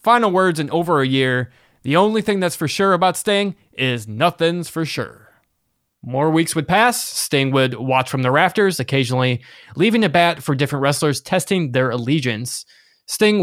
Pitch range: 130-170 Hz